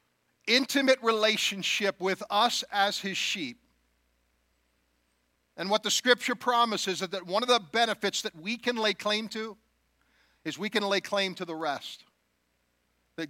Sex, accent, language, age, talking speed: male, American, English, 50-69, 150 wpm